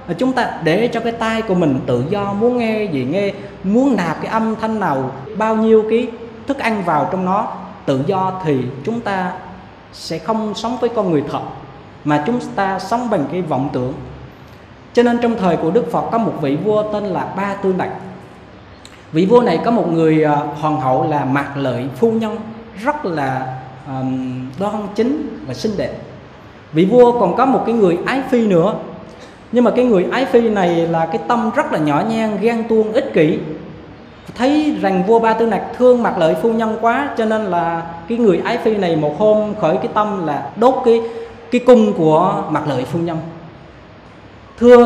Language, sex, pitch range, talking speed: Vietnamese, male, 155-230 Hz, 200 wpm